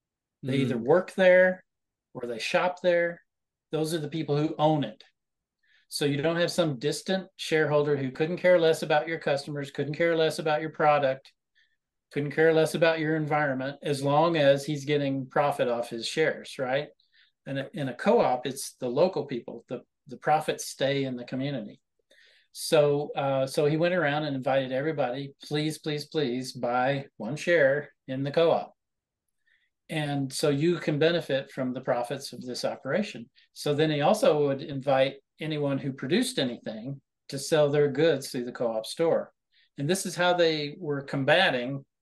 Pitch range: 135-160 Hz